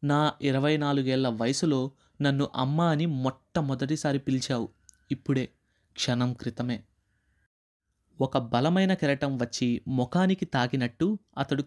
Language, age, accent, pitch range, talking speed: Telugu, 20-39, native, 125-150 Hz, 100 wpm